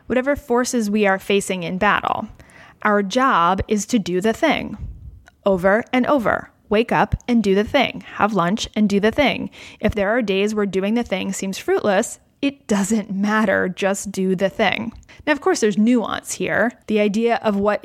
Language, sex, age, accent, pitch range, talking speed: English, female, 20-39, American, 195-245 Hz, 190 wpm